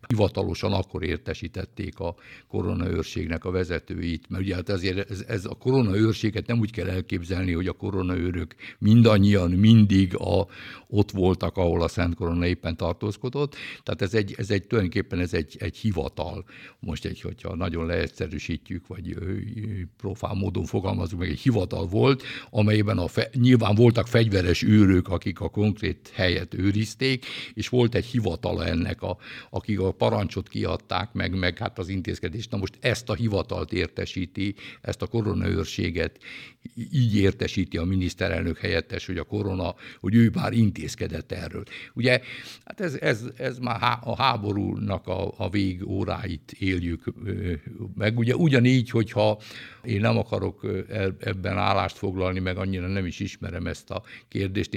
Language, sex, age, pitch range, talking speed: Hungarian, male, 60-79, 90-110 Hz, 150 wpm